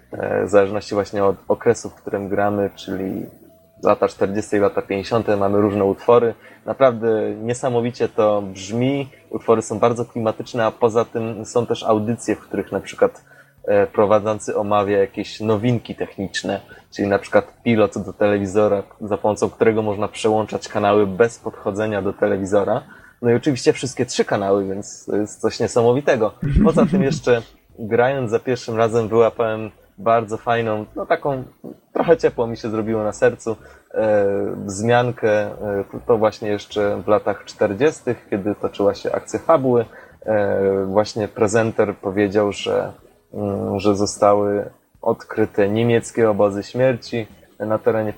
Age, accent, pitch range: 20-39, native, 100-115 Hz